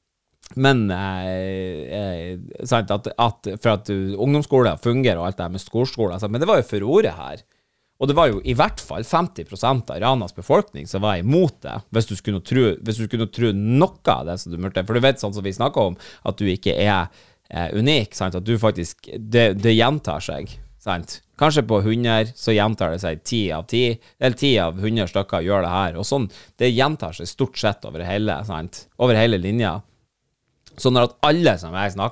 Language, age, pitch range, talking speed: English, 30-49, 95-120 Hz, 200 wpm